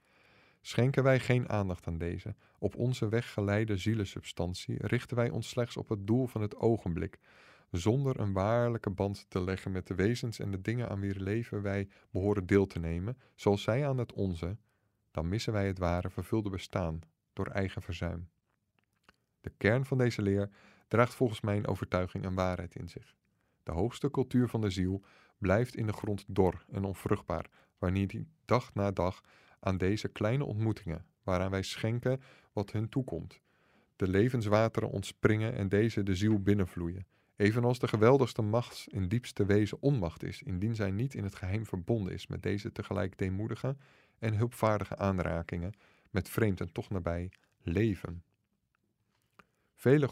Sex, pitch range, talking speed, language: male, 95-120 Hz, 160 wpm, Dutch